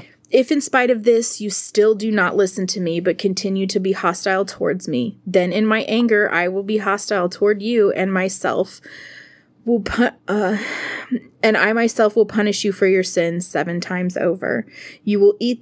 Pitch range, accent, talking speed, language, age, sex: 185-215 Hz, American, 190 wpm, English, 20-39, female